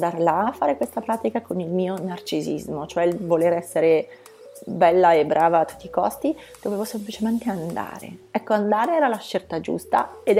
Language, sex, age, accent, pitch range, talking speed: Italian, female, 30-49, native, 195-250 Hz, 180 wpm